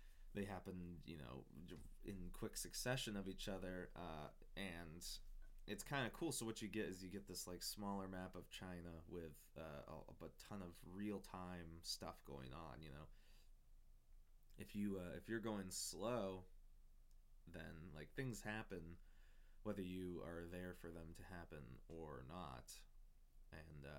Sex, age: male, 20-39